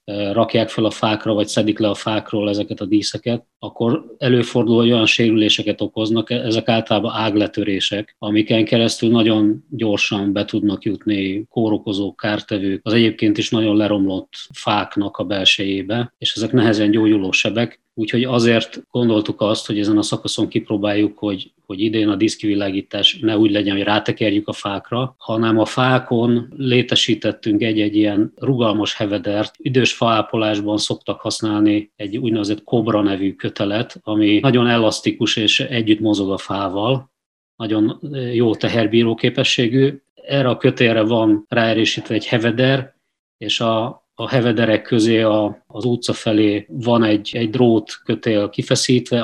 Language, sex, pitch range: Hungarian, male, 105-120 Hz